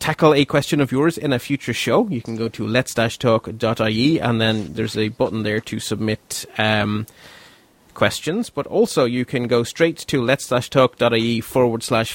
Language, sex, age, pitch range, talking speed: English, male, 30-49, 115-145 Hz, 175 wpm